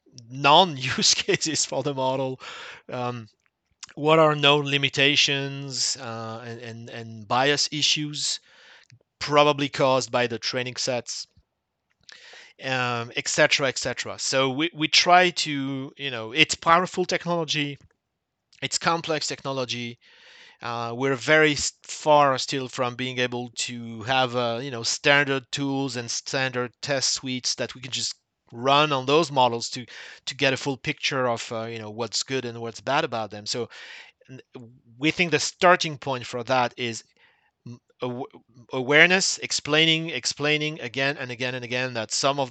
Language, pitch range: English, 120-150 Hz